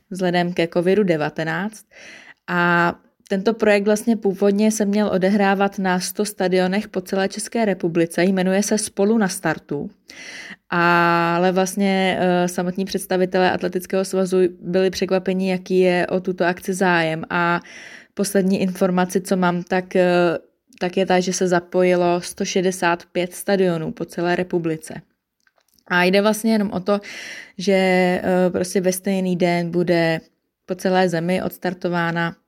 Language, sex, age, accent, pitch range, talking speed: Czech, female, 20-39, native, 180-200 Hz, 130 wpm